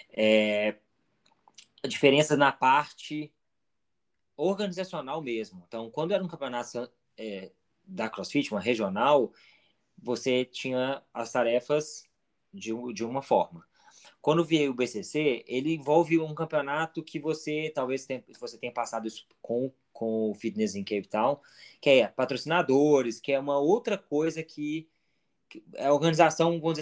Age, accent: 20-39, Brazilian